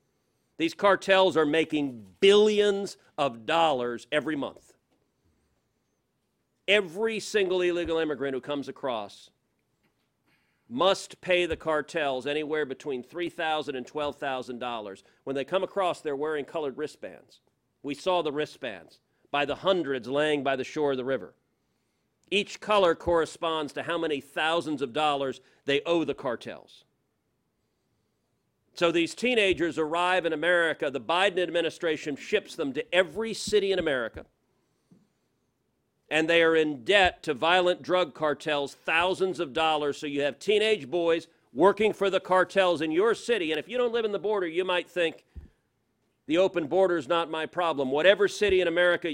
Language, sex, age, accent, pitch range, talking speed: English, male, 40-59, American, 145-185 Hz, 150 wpm